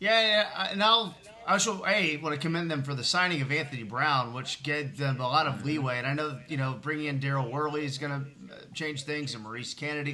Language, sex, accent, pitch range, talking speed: English, male, American, 135-170 Hz, 245 wpm